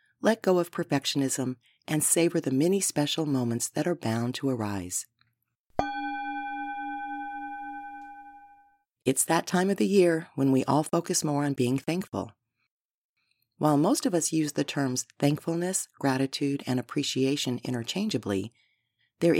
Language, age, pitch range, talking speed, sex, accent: English, 40-59, 125-170 Hz, 130 wpm, female, American